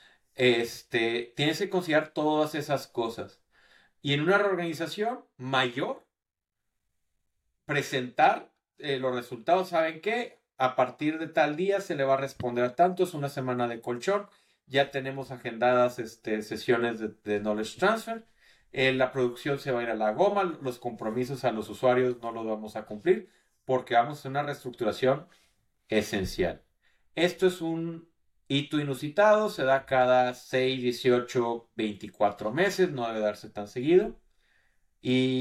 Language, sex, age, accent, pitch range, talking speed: Spanish, male, 40-59, Mexican, 125-180 Hz, 150 wpm